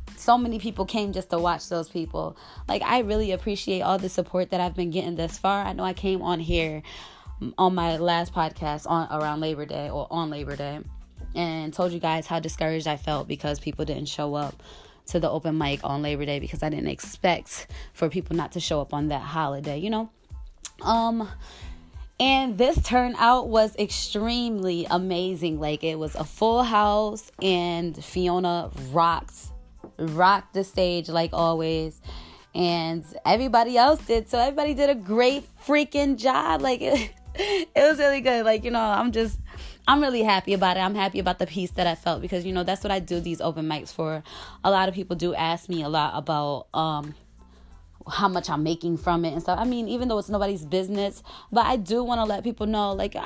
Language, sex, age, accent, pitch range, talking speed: English, female, 20-39, American, 160-220 Hz, 200 wpm